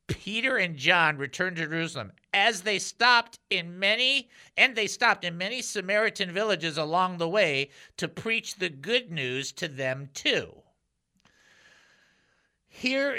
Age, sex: 50-69, male